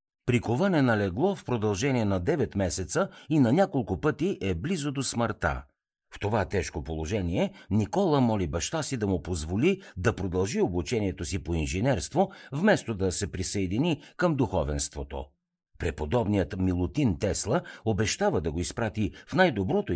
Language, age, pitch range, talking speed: Bulgarian, 60-79, 90-140 Hz, 140 wpm